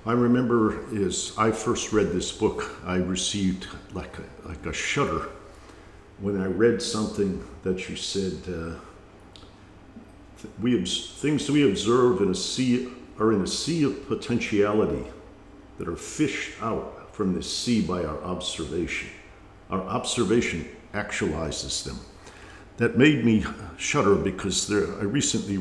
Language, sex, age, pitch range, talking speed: English, male, 50-69, 95-110 Hz, 140 wpm